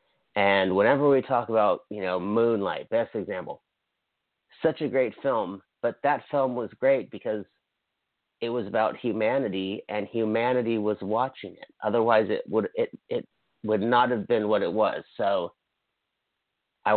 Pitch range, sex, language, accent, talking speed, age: 100-120 Hz, male, English, American, 150 wpm, 40-59